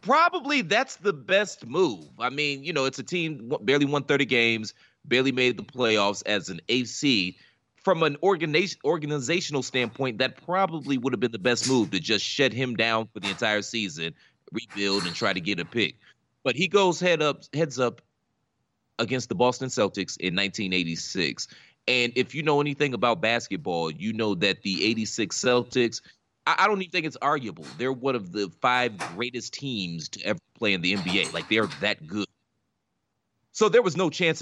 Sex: male